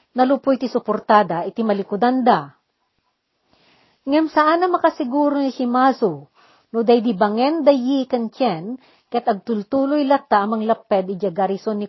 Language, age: Filipino, 50-69